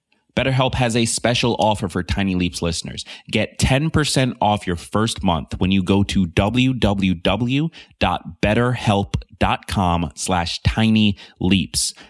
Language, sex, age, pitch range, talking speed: English, male, 30-49, 95-115 Hz, 115 wpm